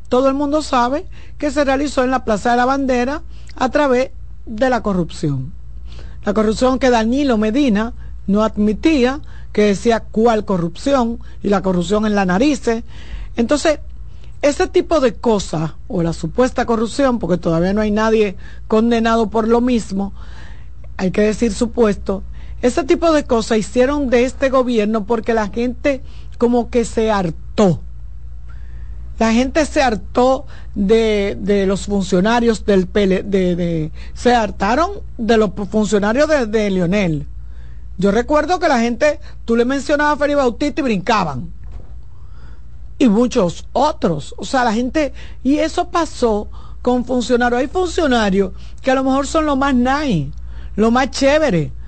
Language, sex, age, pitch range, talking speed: Spanish, female, 50-69, 200-265 Hz, 150 wpm